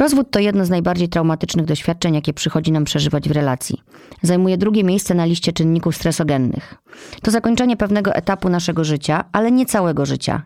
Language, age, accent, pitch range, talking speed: Polish, 30-49, native, 160-200 Hz, 170 wpm